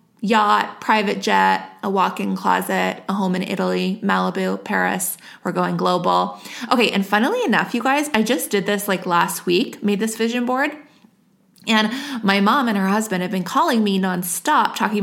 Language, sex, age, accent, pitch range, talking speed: English, female, 20-39, American, 185-225 Hz, 175 wpm